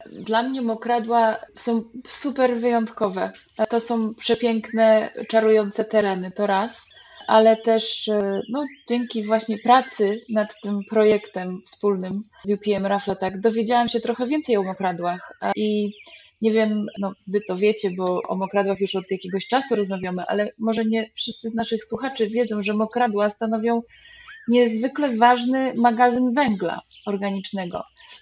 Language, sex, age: Polish, female, 20-39